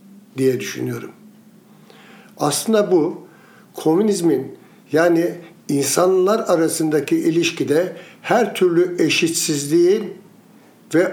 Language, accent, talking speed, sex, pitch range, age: Turkish, native, 70 wpm, male, 165-205 Hz, 60-79